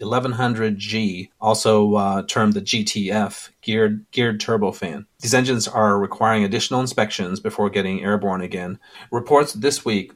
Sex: male